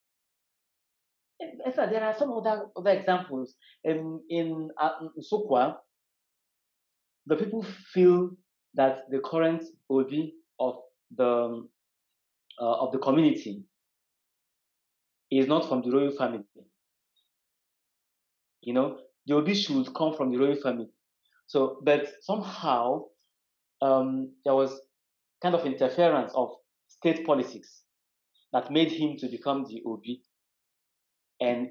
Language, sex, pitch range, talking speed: English, male, 125-165 Hz, 115 wpm